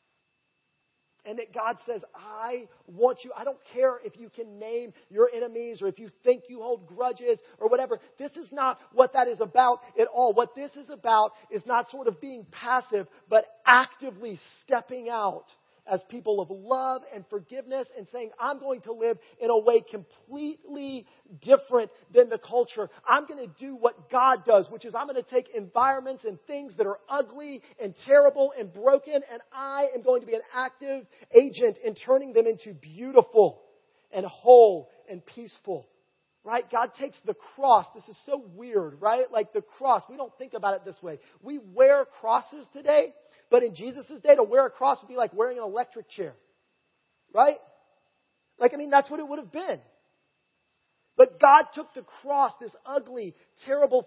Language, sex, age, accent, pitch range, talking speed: English, male, 40-59, American, 225-280 Hz, 185 wpm